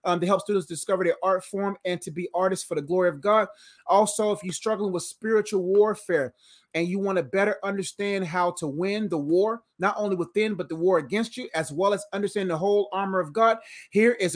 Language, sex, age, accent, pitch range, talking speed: English, male, 30-49, American, 180-220 Hz, 225 wpm